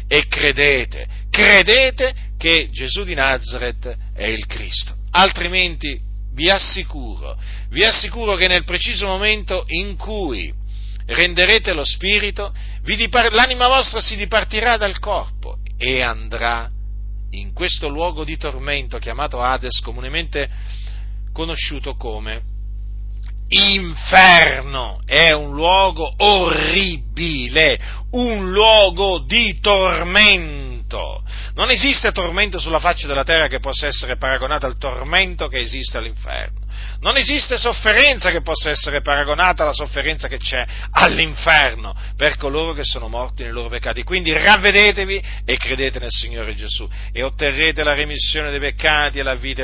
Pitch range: 120-180 Hz